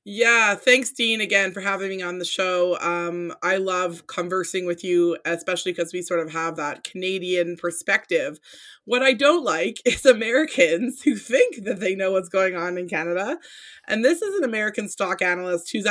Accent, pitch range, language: American, 170-205 Hz, English